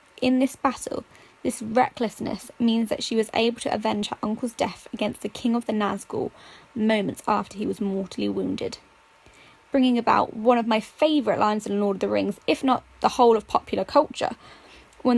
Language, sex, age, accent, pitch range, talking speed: English, female, 20-39, British, 220-270 Hz, 185 wpm